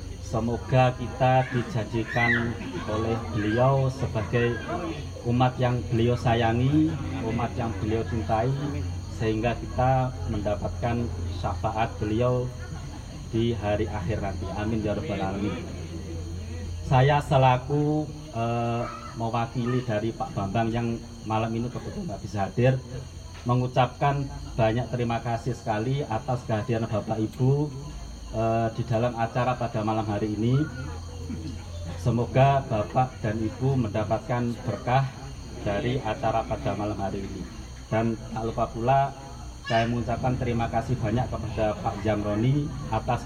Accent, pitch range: Indonesian, 105-125 Hz